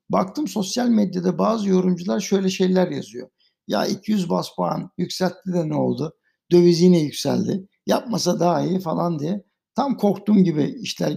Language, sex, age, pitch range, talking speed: Turkish, male, 60-79, 175-210 Hz, 150 wpm